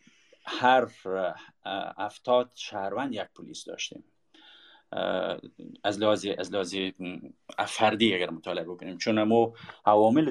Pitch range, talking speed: 95-145 Hz, 85 wpm